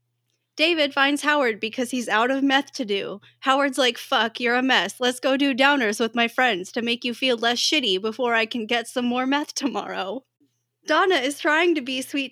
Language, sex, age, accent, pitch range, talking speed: English, female, 20-39, American, 220-275 Hz, 210 wpm